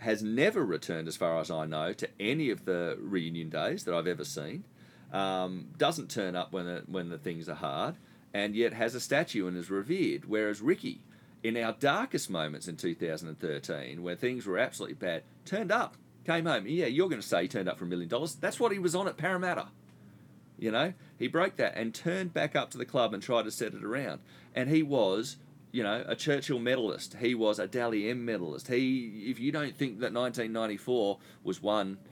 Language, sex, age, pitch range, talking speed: English, male, 40-59, 90-130 Hz, 215 wpm